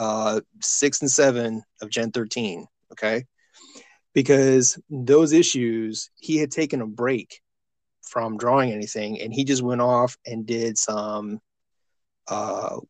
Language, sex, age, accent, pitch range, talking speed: English, male, 30-49, American, 120-140 Hz, 130 wpm